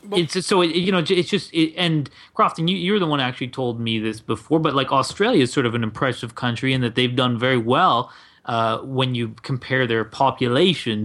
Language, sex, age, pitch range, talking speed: English, male, 30-49, 120-170 Hz, 225 wpm